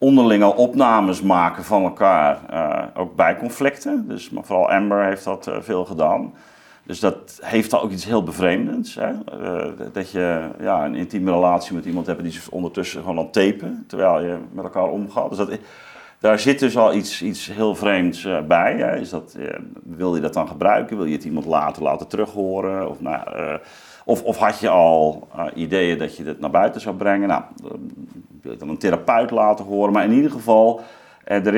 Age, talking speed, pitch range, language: 50-69, 200 wpm, 90-115 Hz, Dutch